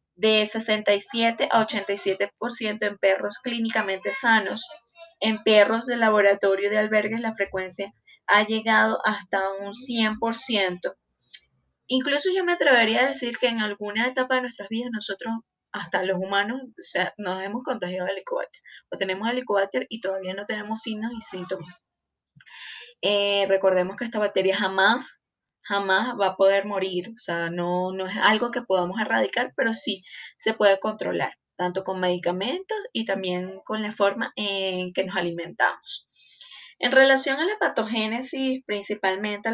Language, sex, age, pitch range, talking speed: Spanish, female, 10-29, 195-235 Hz, 150 wpm